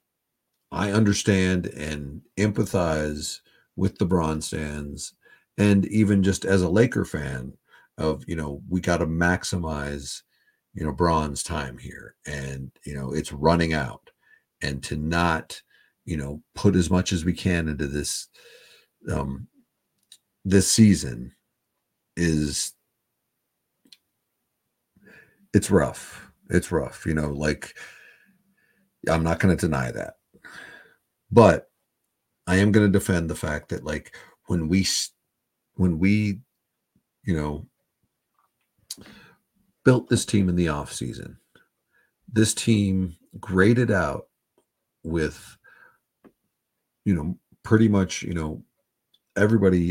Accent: American